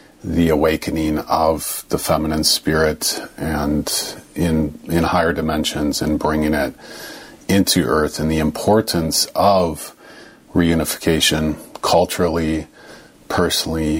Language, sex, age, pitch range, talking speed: English, male, 40-59, 75-90 Hz, 100 wpm